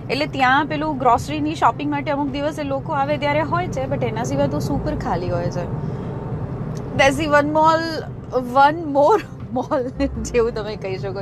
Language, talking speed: Gujarati, 125 wpm